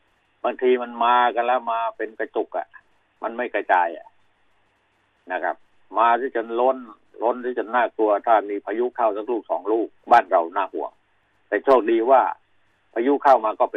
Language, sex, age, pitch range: Thai, male, 60-79, 105-125 Hz